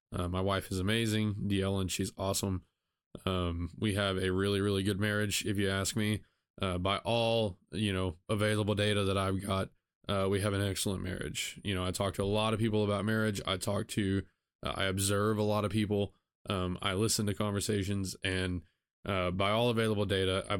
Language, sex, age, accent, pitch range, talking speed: English, male, 20-39, American, 95-110 Hz, 205 wpm